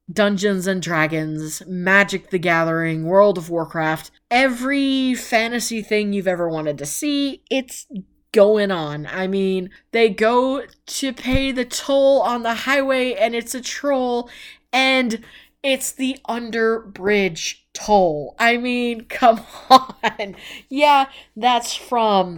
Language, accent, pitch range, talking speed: English, American, 190-250 Hz, 125 wpm